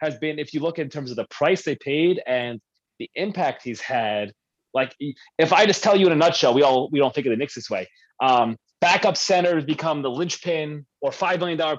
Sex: male